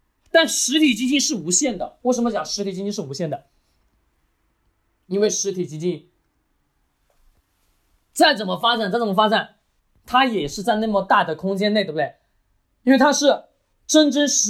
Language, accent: Chinese, native